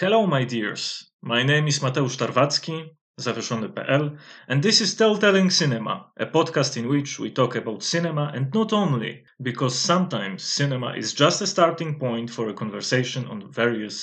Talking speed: 165 wpm